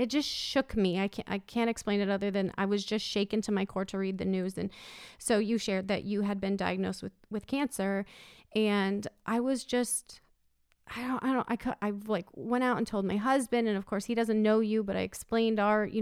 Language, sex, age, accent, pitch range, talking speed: English, female, 30-49, American, 200-235 Hz, 235 wpm